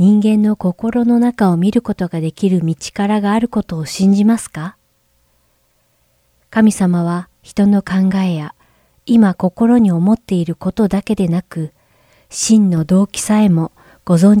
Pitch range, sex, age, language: 165-215 Hz, female, 40-59, Japanese